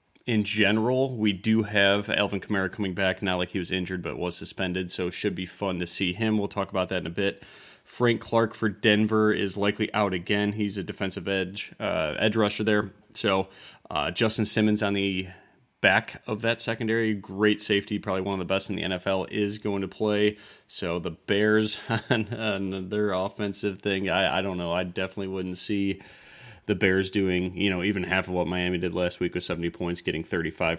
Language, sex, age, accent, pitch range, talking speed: English, male, 20-39, American, 90-105 Hz, 205 wpm